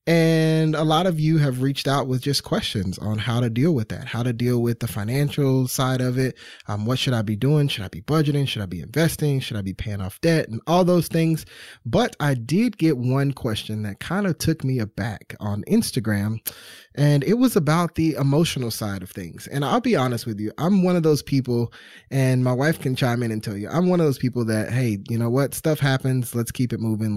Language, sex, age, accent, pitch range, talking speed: English, male, 20-39, American, 115-150 Hz, 240 wpm